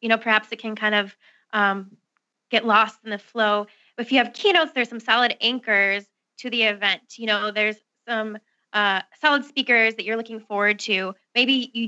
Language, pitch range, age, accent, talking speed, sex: English, 215-250 Hz, 20-39, American, 190 wpm, female